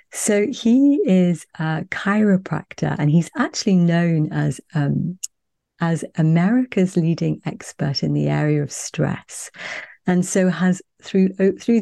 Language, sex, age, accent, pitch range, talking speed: English, female, 40-59, British, 145-180 Hz, 125 wpm